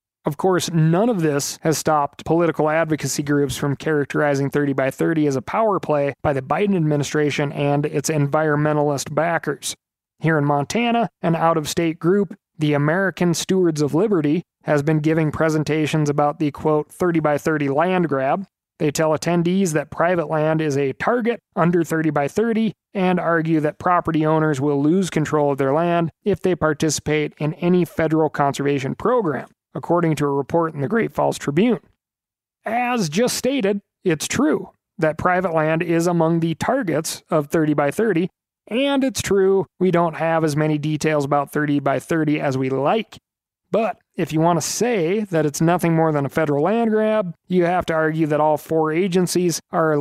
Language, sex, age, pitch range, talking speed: English, male, 30-49, 150-175 Hz, 175 wpm